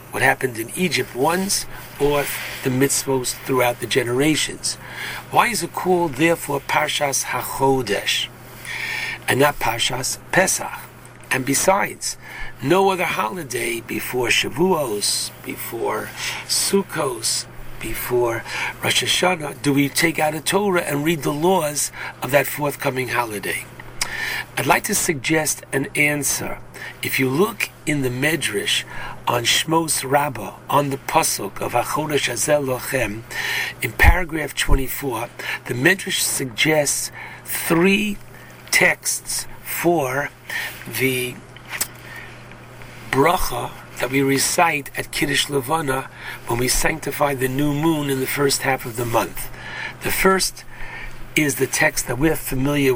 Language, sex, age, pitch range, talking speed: English, male, 60-79, 130-160 Hz, 120 wpm